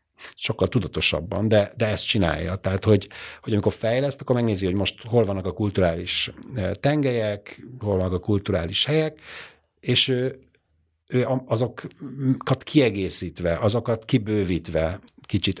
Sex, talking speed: male, 125 wpm